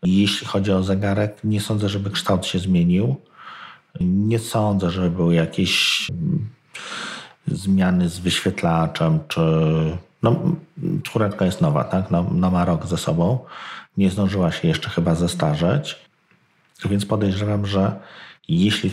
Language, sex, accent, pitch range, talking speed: Polish, male, native, 90-120 Hz, 125 wpm